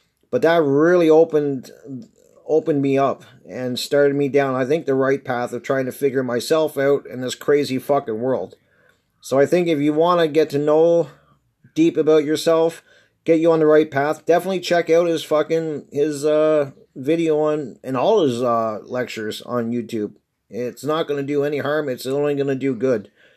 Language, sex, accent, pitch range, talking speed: English, male, American, 130-165 Hz, 195 wpm